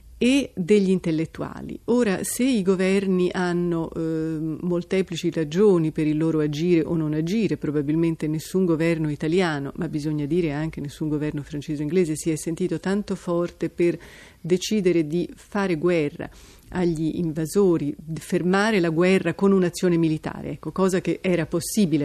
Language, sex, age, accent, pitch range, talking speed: Italian, female, 30-49, native, 155-190 Hz, 150 wpm